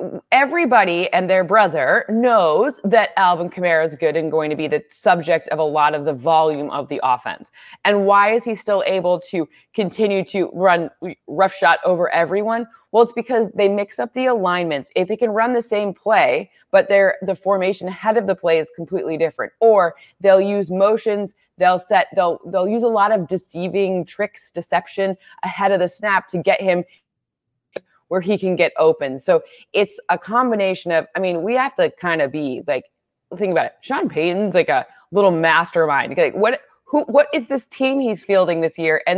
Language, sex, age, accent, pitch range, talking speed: English, female, 20-39, American, 170-215 Hz, 195 wpm